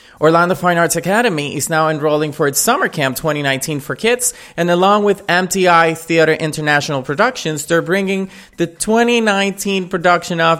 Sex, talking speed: male, 155 wpm